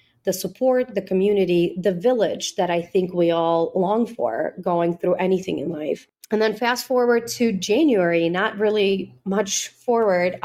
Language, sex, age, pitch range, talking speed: English, female, 30-49, 175-210 Hz, 160 wpm